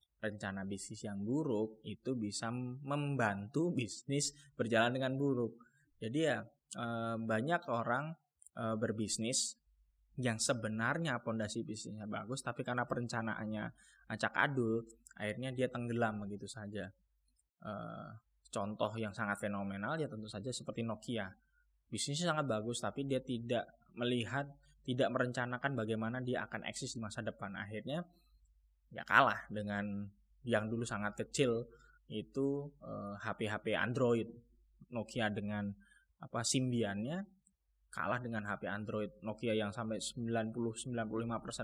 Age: 20-39